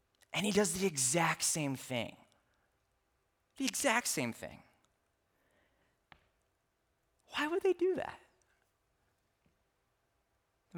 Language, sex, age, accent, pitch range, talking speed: English, male, 20-39, American, 115-165 Hz, 95 wpm